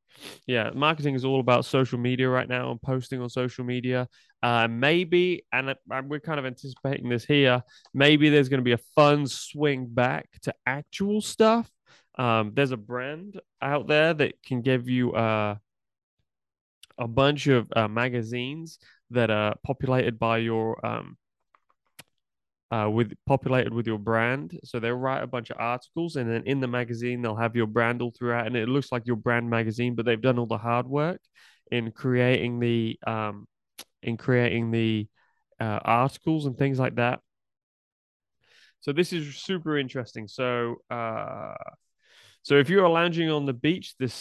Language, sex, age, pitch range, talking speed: English, male, 20-39, 120-145 Hz, 170 wpm